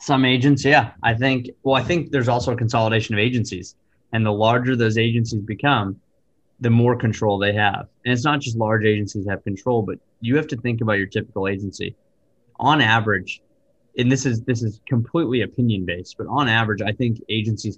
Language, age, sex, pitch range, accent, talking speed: English, 20-39, male, 105-125 Hz, American, 200 wpm